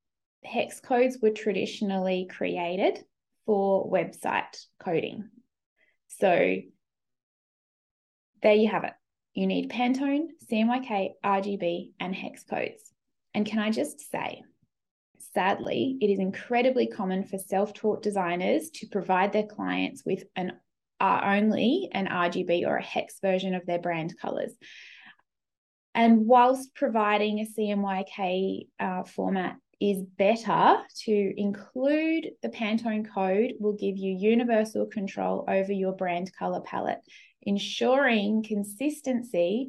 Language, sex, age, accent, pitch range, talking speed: English, female, 20-39, Australian, 195-240 Hz, 120 wpm